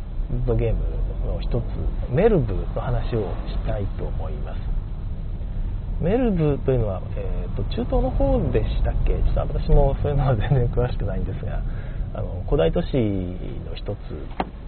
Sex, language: male, Japanese